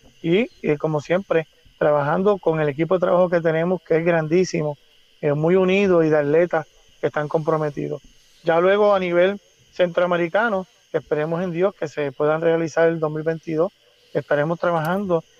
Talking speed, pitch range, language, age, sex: 155 wpm, 155-185 Hz, Spanish, 30-49, male